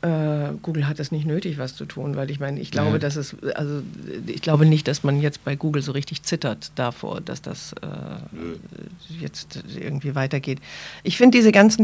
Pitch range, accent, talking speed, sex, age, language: 155-185 Hz, German, 195 wpm, female, 50-69, German